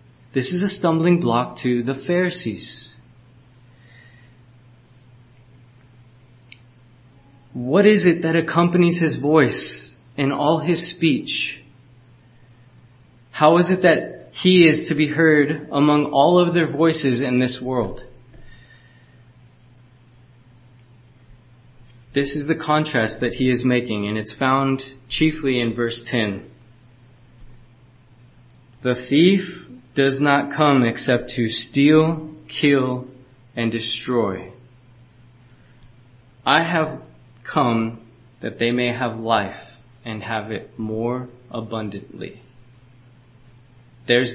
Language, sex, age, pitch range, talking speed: English, male, 20-39, 120-135 Hz, 105 wpm